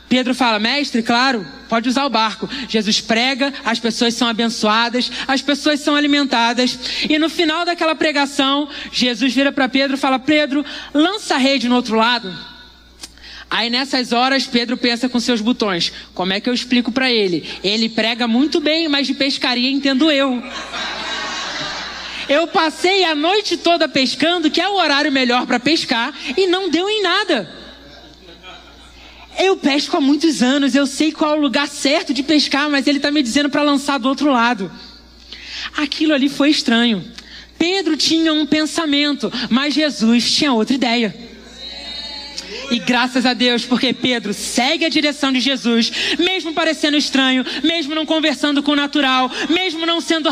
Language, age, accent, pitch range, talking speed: Portuguese, 20-39, Brazilian, 250-330 Hz, 165 wpm